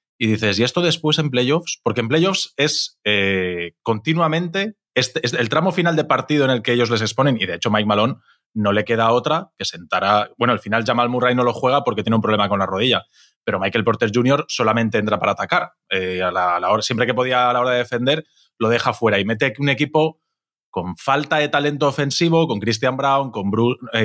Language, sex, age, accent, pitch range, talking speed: Spanish, male, 20-39, Spanish, 110-145 Hz, 230 wpm